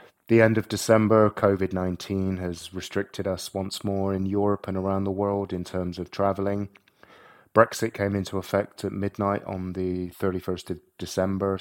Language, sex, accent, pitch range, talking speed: English, male, British, 95-105 Hz, 160 wpm